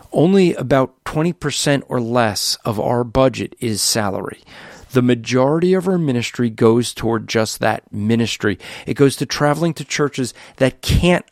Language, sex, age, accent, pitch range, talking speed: English, male, 40-59, American, 125-150 Hz, 150 wpm